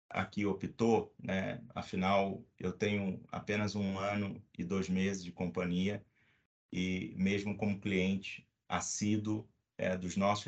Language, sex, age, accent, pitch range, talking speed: Portuguese, male, 40-59, Brazilian, 95-110 Hz, 125 wpm